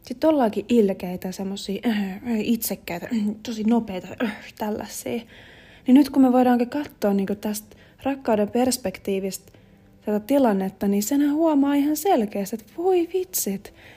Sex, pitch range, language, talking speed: female, 195-275 Hz, Finnish, 140 wpm